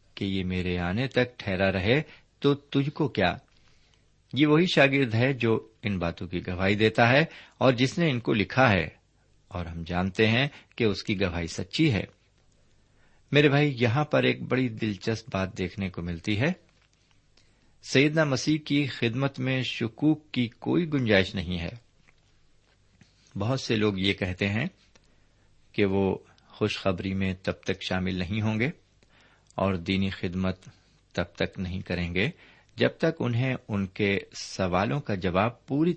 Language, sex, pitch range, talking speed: Urdu, male, 95-130 Hz, 160 wpm